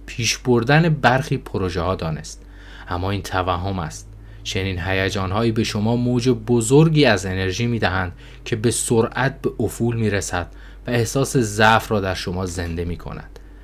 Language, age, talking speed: Persian, 20-39, 165 wpm